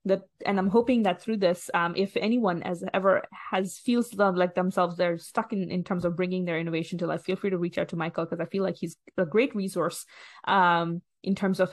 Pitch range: 180-225 Hz